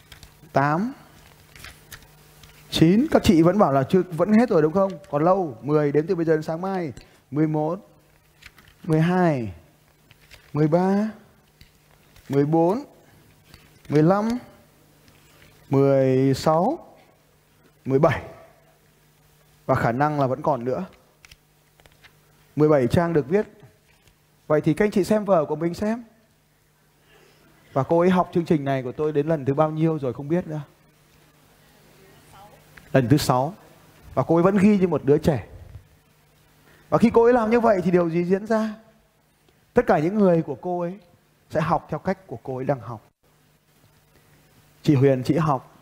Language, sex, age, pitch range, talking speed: Vietnamese, male, 20-39, 140-190 Hz, 150 wpm